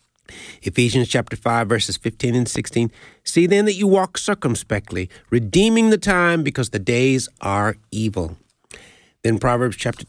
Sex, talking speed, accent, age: male, 145 wpm, American, 50-69